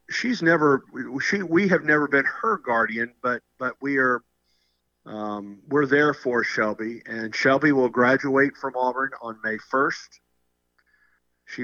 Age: 50-69